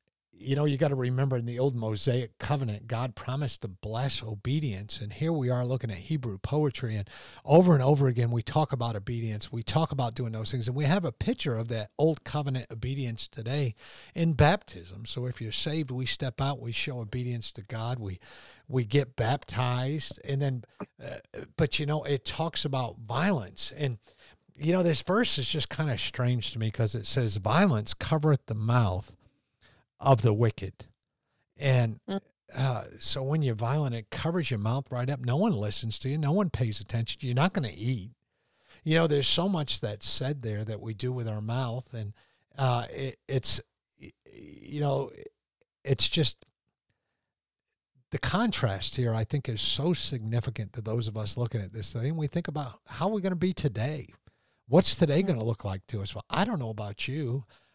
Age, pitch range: 50-69, 115-145 Hz